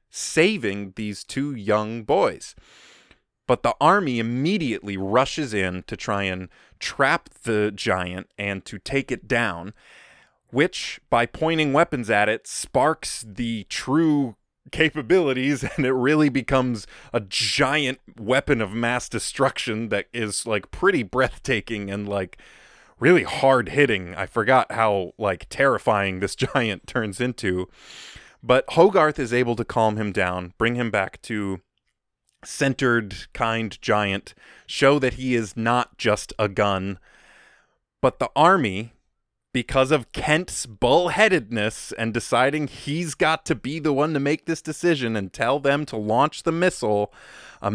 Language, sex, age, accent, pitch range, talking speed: English, male, 20-39, American, 100-135 Hz, 140 wpm